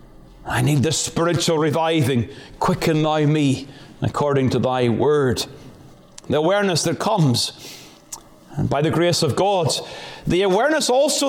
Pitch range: 140-220 Hz